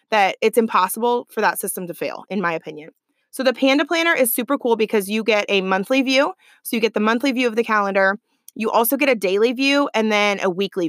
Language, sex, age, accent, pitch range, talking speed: English, female, 20-39, American, 200-245 Hz, 235 wpm